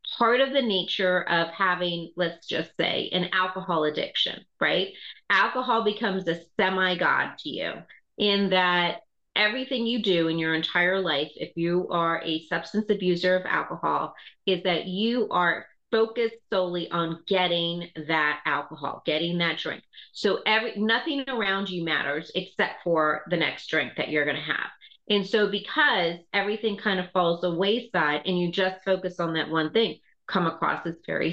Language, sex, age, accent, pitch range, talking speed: English, female, 30-49, American, 170-215 Hz, 165 wpm